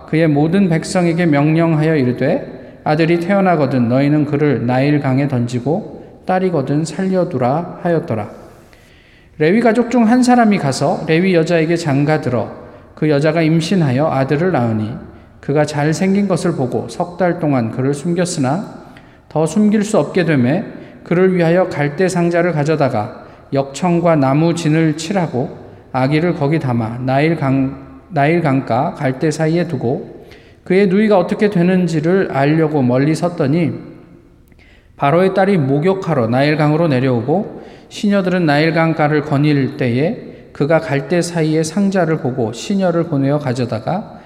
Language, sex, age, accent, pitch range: Korean, male, 20-39, native, 135-175 Hz